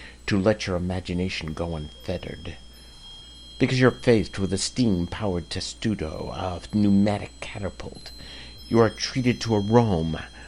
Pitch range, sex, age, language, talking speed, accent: 65-105 Hz, male, 60-79, English, 120 wpm, American